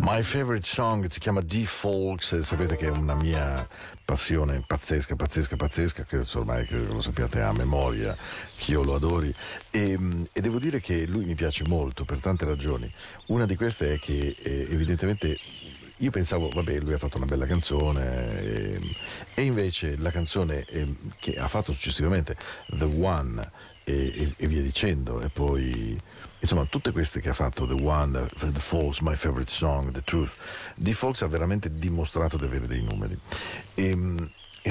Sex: male